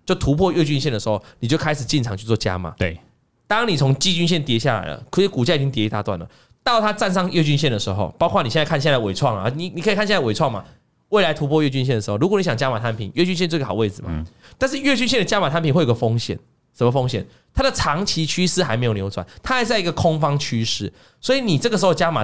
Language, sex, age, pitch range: Chinese, male, 20-39, 125-185 Hz